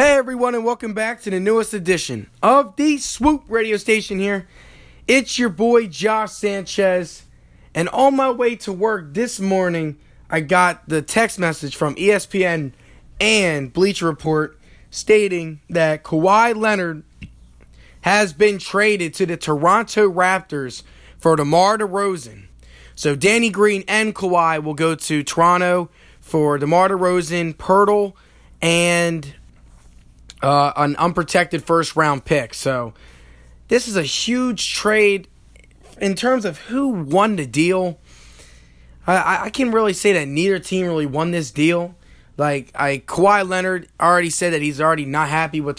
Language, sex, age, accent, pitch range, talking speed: English, male, 20-39, American, 145-205 Hz, 145 wpm